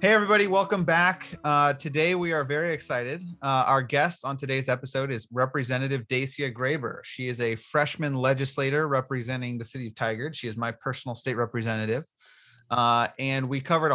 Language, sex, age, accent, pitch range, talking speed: English, male, 30-49, American, 105-130 Hz, 170 wpm